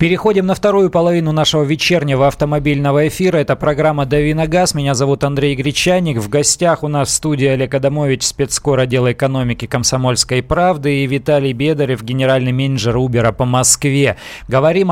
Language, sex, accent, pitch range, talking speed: Russian, male, native, 130-155 Hz, 150 wpm